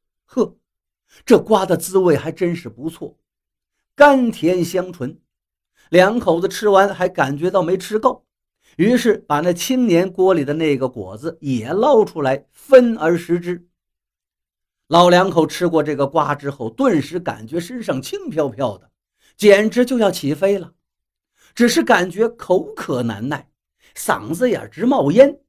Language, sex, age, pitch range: Chinese, male, 50-69, 140-220 Hz